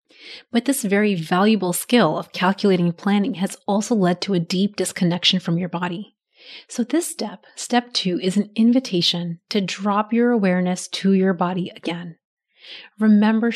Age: 30-49